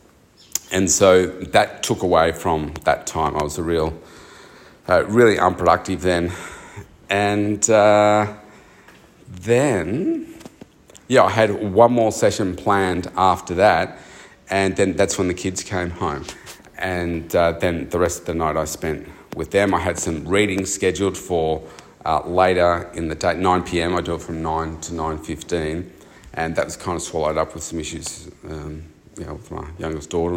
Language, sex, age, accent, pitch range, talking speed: English, male, 40-59, Australian, 85-100 Hz, 165 wpm